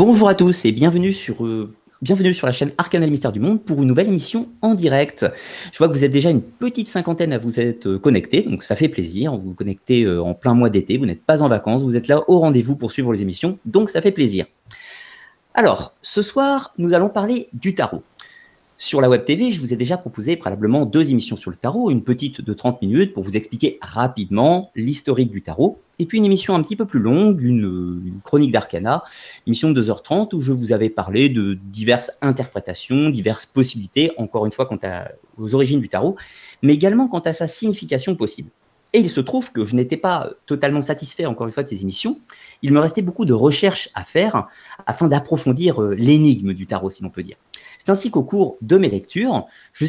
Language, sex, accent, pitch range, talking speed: French, male, French, 115-185 Hz, 220 wpm